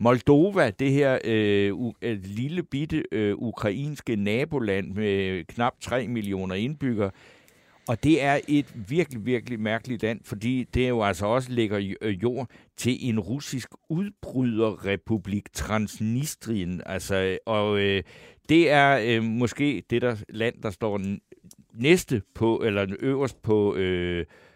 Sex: male